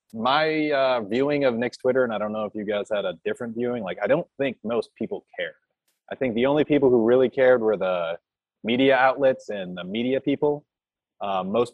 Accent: American